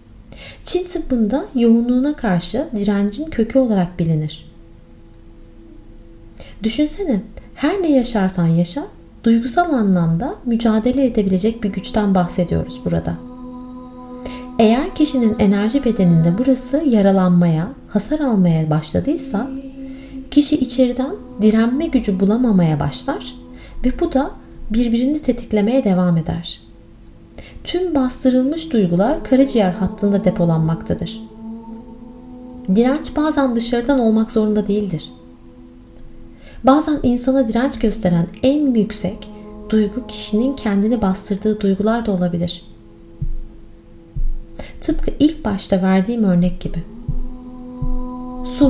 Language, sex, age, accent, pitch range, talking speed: Turkish, female, 30-49, native, 185-255 Hz, 90 wpm